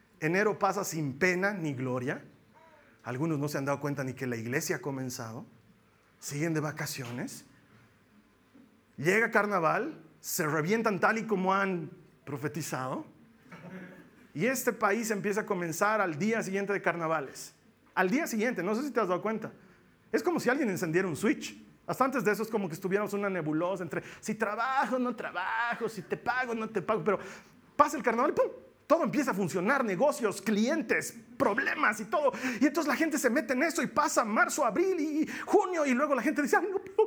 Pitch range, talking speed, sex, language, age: 180-295 Hz, 190 wpm, male, Spanish, 40-59